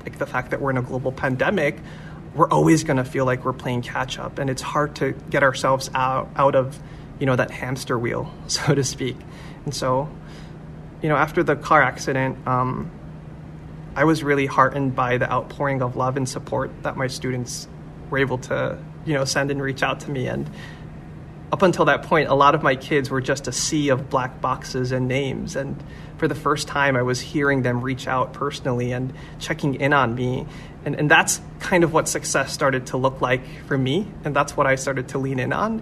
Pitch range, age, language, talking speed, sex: 130-150 Hz, 30-49, English, 215 wpm, male